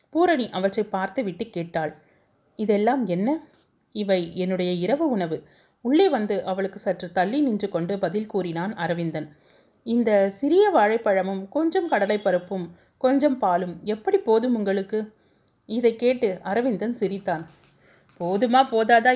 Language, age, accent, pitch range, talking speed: Tamil, 30-49, native, 180-250 Hz, 115 wpm